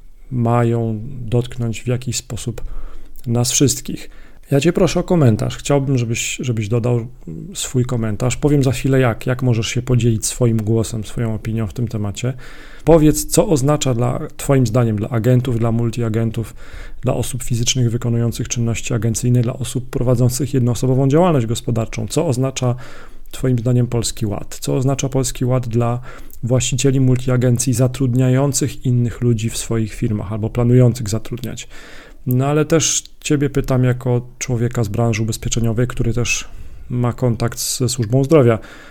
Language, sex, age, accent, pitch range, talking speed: Polish, male, 40-59, native, 115-130 Hz, 145 wpm